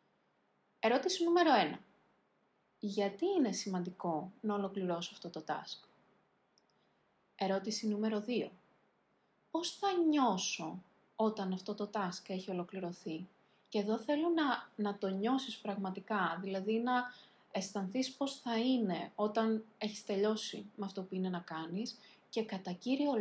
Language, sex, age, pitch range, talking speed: Greek, female, 20-39, 195-240 Hz, 125 wpm